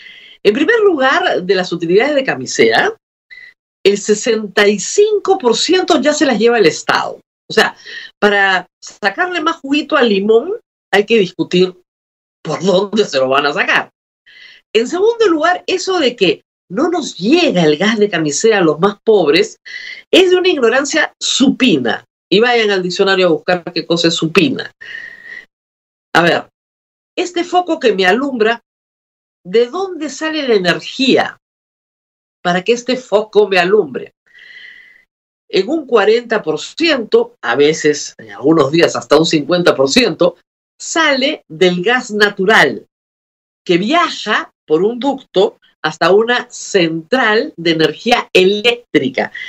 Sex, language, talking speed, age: female, Spanish, 135 wpm, 50-69